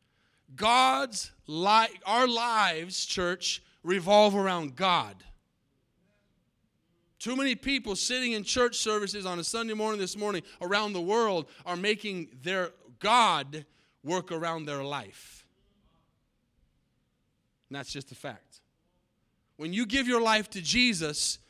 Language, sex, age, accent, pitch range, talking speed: English, male, 30-49, American, 180-230 Hz, 125 wpm